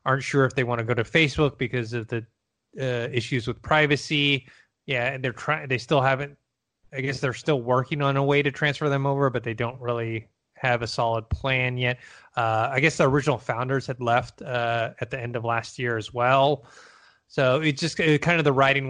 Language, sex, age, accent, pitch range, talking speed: English, male, 20-39, American, 115-140 Hz, 215 wpm